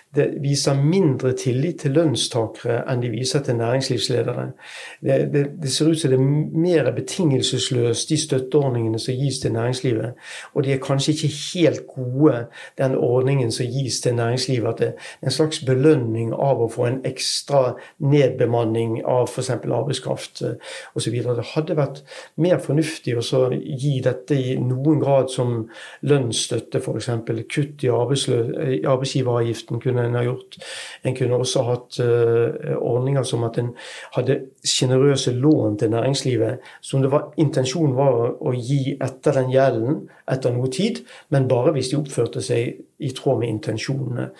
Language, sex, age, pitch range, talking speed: English, male, 60-79, 120-145 Hz, 160 wpm